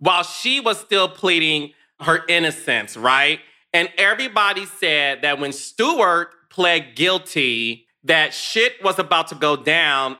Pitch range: 135-175 Hz